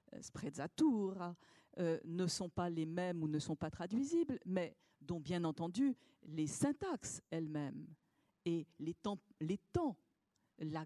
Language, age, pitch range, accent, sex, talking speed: French, 50-69, 165-240 Hz, French, female, 125 wpm